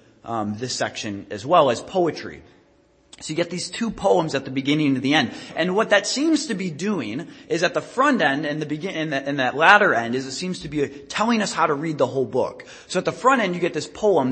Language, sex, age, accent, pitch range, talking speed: English, male, 20-39, American, 140-205 Hz, 265 wpm